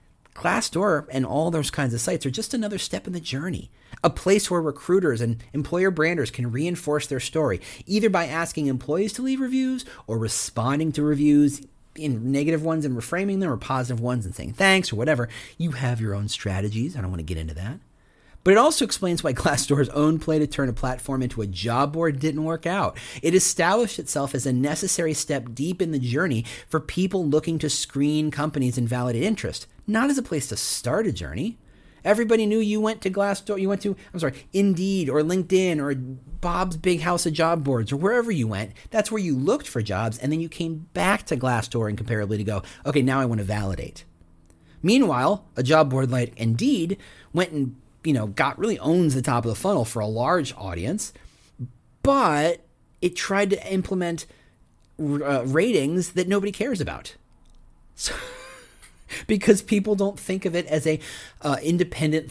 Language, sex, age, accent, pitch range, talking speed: English, male, 40-59, American, 120-175 Hz, 195 wpm